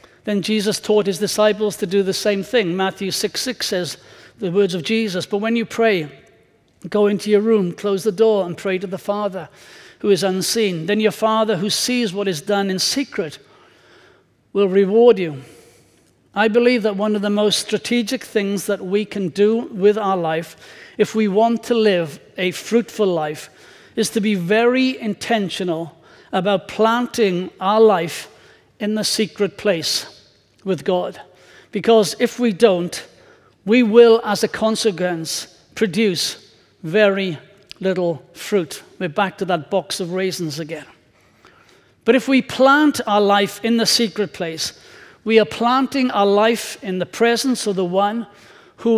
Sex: male